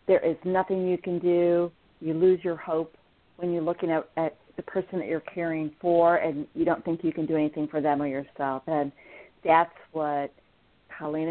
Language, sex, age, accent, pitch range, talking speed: English, female, 40-59, American, 150-185 Hz, 195 wpm